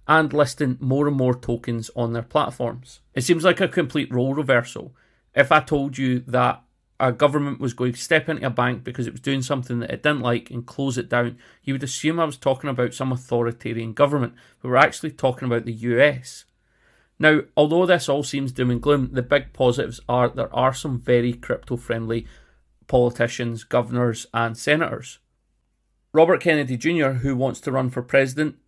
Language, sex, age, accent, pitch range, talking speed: English, male, 40-59, British, 120-145 Hz, 190 wpm